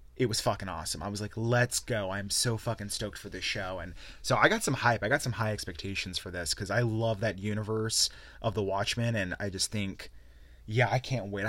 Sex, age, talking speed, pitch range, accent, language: male, 20-39, 235 wpm, 95-120 Hz, American, English